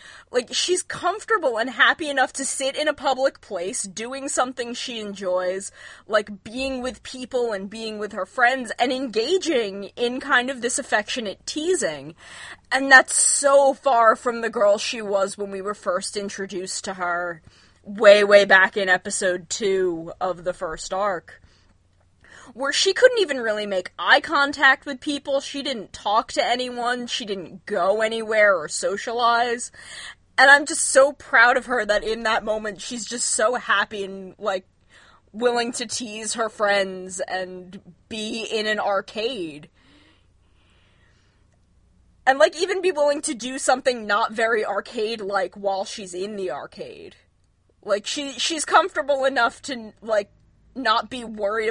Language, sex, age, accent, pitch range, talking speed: English, female, 20-39, American, 195-260 Hz, 155 wpm